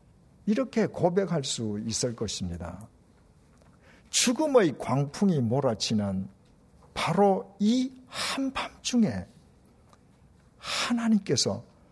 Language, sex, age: Korean, male, 60-79